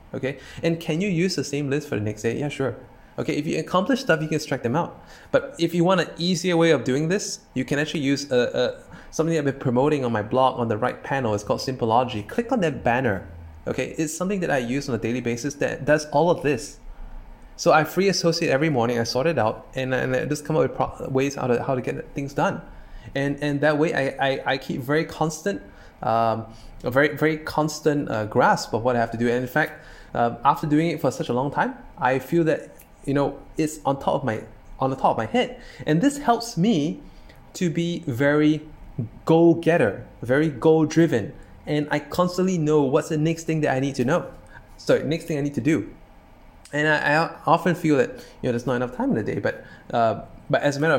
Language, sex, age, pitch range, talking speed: English, male, 20-39, 125-160 Hz, 235 wpm